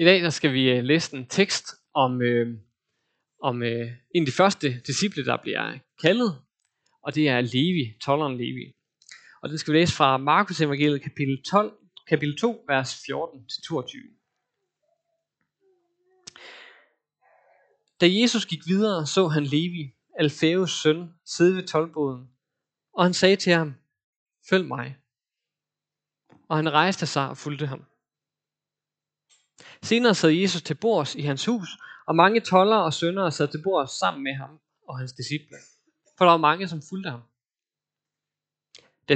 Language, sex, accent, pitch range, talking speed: Danish, male, native, 140-180 Hz, 145 wpm